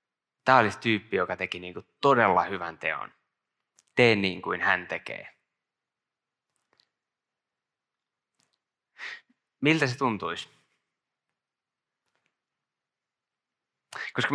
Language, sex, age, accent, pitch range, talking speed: Finnish, male, 20-39, native, 90-115 Hz, 80 wpm